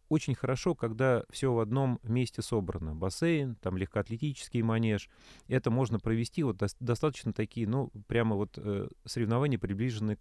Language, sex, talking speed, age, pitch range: Russian, male, 130 wpm, 30-49, 105-130 Hz